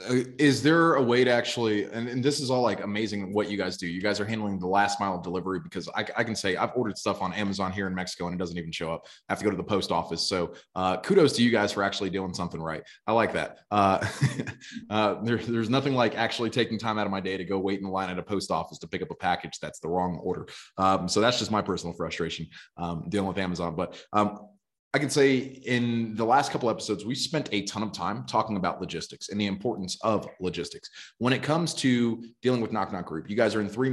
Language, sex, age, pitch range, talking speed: English, male, 20-39, 95-120 Hz, 260 wpm